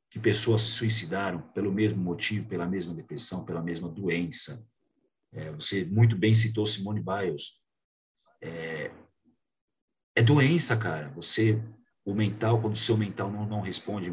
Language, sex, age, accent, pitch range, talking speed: Portuguese, male, 40-59, Brazilian, 100-115 Hz, 145 wpm